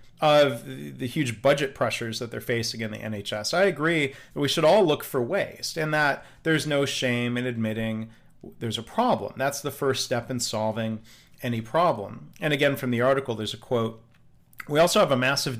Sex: male